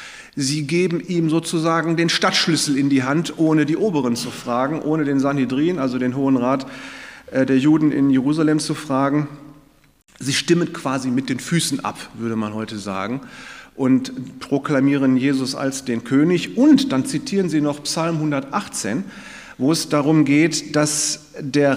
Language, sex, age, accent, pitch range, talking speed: German, male, 40-59, German, 135-170 Hz, 155 wpm